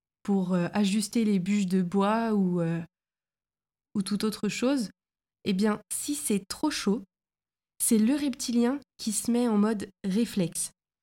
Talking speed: 150 wpm